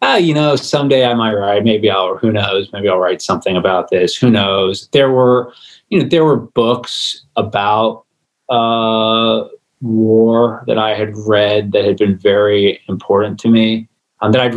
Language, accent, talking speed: English, American, 175 wpm